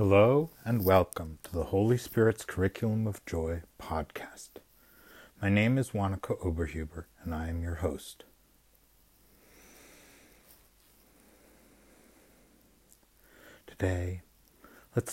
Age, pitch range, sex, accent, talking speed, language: 60-79, 85-105 Hz, male, American, 90 wpm, English